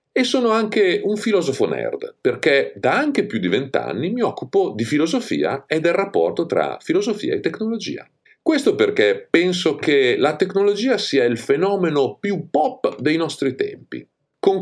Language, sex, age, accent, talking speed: Italian, male, 50-69, native, 155 wpm